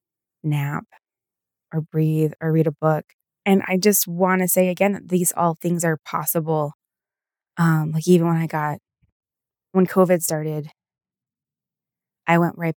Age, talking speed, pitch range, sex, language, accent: 20-39, 145 wpm, 155-190 Hz, female, English, American